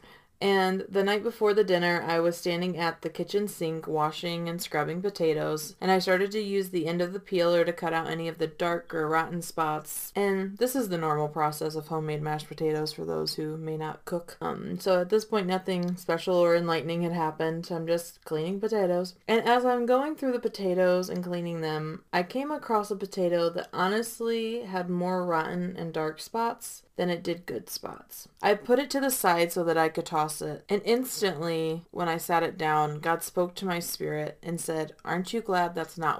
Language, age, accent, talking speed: English, 20-39, American, 210 wpm